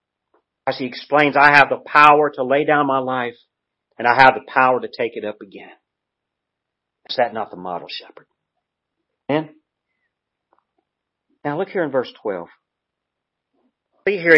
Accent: American